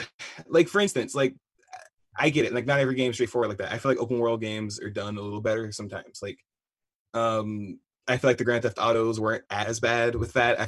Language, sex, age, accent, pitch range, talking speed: English, male, 20-39, American, 105-130 Hz, 240 wpm